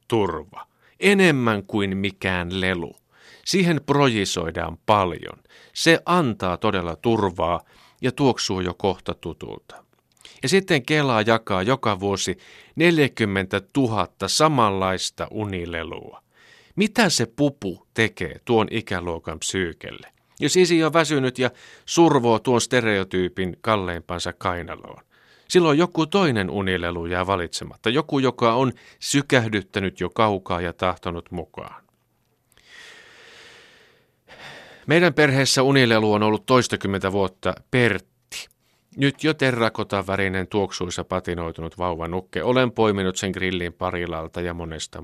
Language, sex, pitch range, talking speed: Finnish, male, 90-130 Hz, 105 wpm